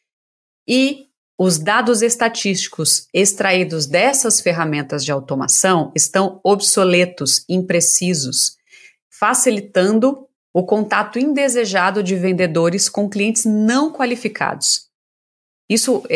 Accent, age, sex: Brazilian, 30-49, female